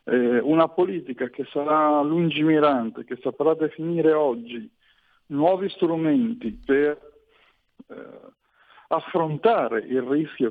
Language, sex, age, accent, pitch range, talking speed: Italian, male, 50-69, native, 135-170 Hz, 90 wpm